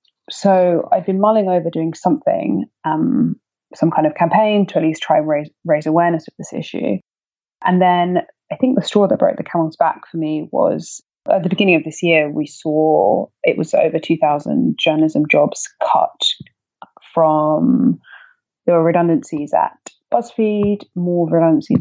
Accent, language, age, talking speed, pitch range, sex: British, English, 20-39, 165 wpm, 155-200 Hz, female